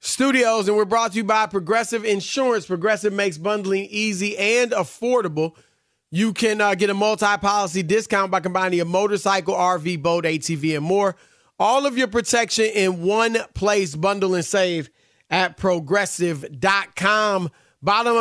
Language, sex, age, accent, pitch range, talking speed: English, male, 30-49, American, 170-210 Hz, 145 wpm